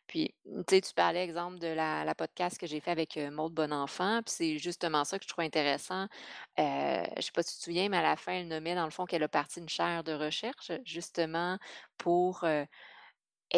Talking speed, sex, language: 235 wpm, female, French